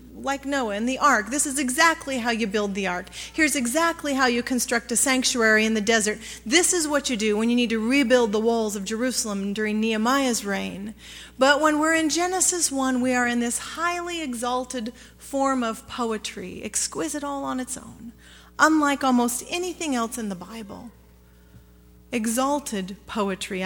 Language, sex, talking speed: English, female, 175 wpm